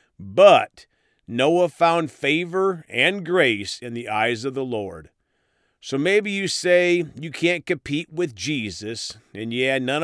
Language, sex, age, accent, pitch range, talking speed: English, male, 40-59, American, 120-180 Hz, 145 wpm